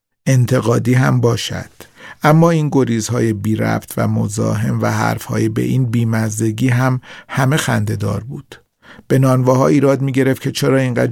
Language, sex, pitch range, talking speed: Persian, male, 110-130 Hz, 140 wpm